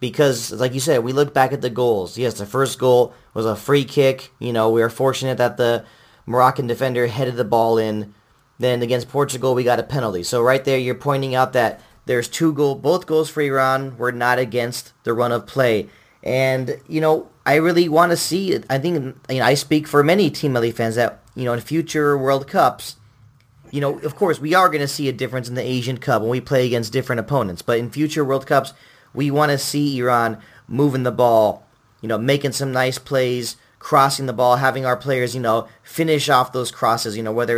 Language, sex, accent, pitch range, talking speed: English, male, American, 120-140 Hz, 225 wpm